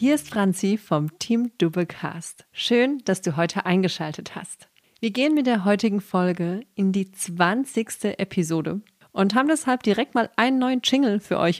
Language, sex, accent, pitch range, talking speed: German, female, German, 175-225 Hz, 165 wpm